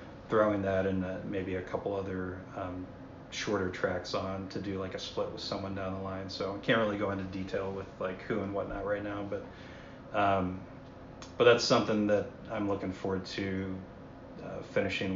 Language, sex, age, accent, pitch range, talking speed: English, male, 30-49, American, 95-100 Hz, 190 wpm